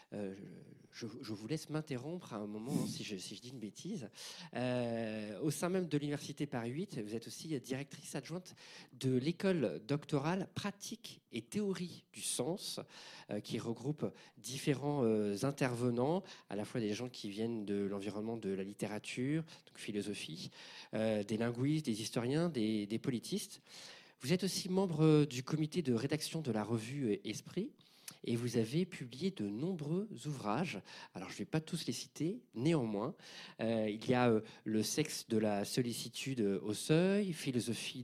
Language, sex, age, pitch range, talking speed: French, male, 40-59, 115-170 Hz, 165 wpm